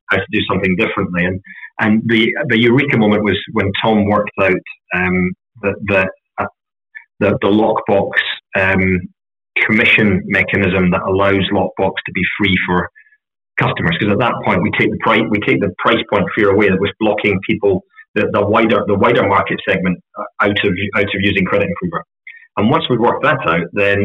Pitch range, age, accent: 95-115 Hz, 30-49, British